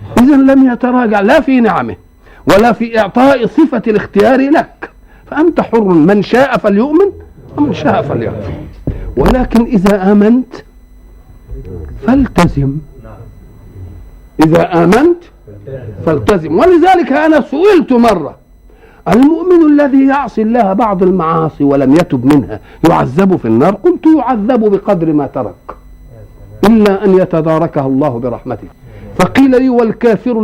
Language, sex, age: Arabic, male, 60-79